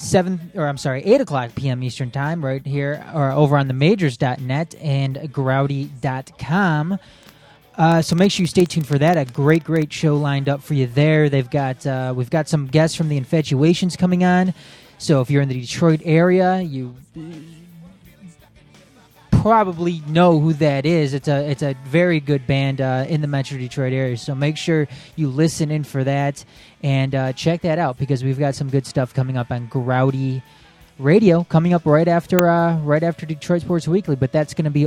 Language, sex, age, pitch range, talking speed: English, male, 20-39, 135-170 Hz, 195 wpm